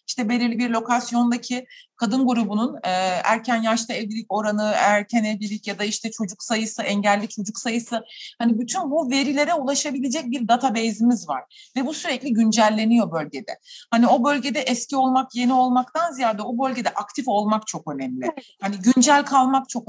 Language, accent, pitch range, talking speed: Turkish, native, 225-275 Hz, 155 wpm